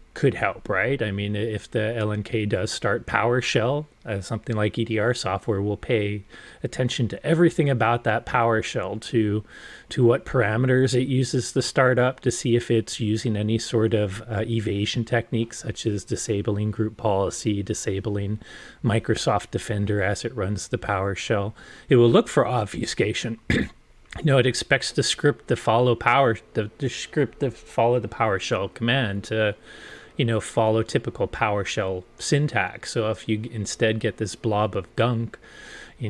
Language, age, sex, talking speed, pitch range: English, 30-49, male, 160 wpm, 105-120 Hz